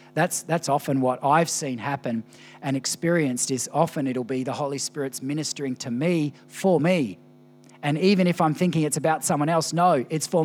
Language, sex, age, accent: English, male, 40-59, Australian